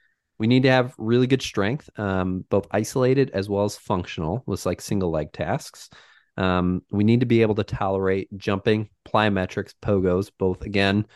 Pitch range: 95-115 Hz